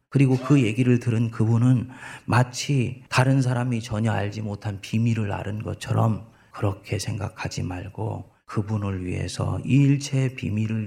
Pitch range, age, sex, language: 110-140 Hz, 40-59, male, Korean